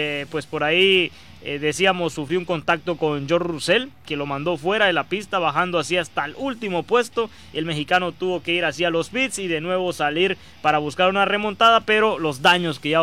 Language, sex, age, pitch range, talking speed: Spanish, male, 20-39, 155-190 Hz, 205 wpm